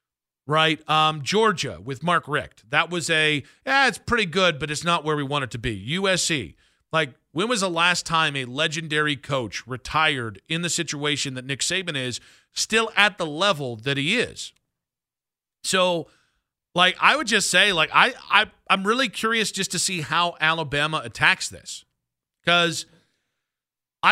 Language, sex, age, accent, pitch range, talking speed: English, male, 40-59, American, 145-190 Hz, 170 wpm